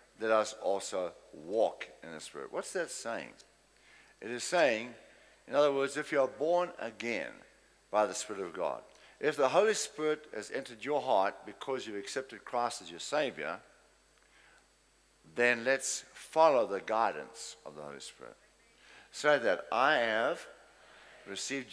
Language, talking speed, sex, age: English, 150 wpm, male, 60-79